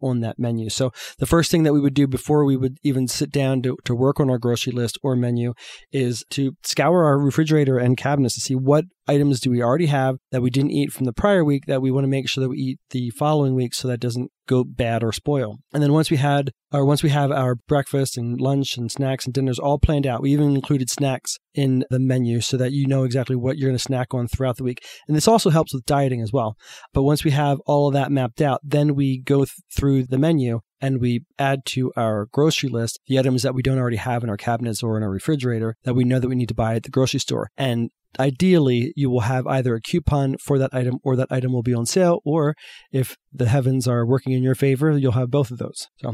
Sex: male